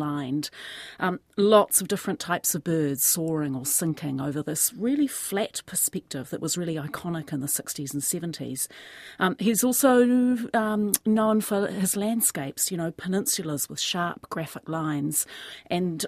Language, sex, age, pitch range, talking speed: English, female, 40-59, 155-205 Hz, 155 wpm